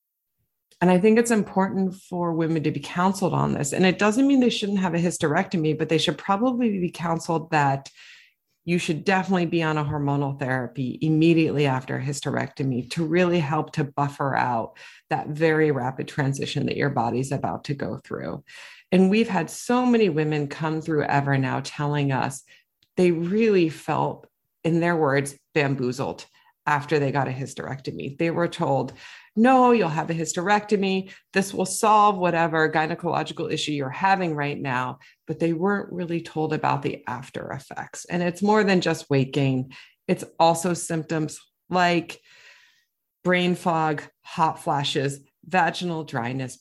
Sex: female